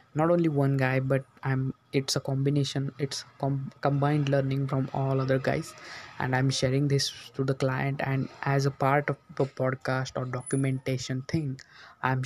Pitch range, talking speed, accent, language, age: 130-140 Hz, 165 wpm, Indian, English, 20-39